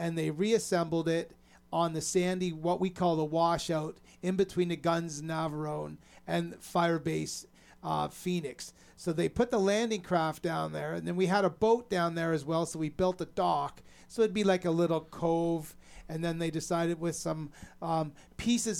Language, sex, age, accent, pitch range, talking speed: English, male, 30-49, American, 165-180 Hz, 190 wpm